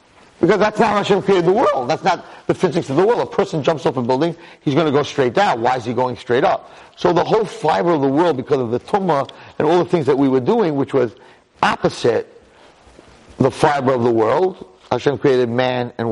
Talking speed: 235 wpm